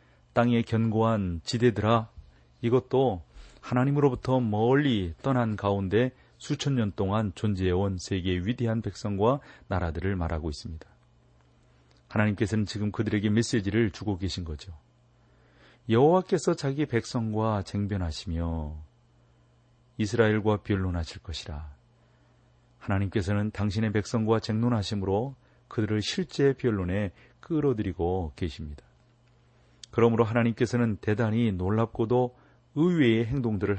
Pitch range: 90-120 Hz